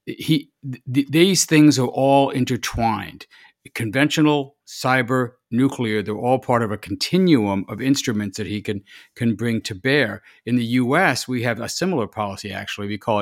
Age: 50-69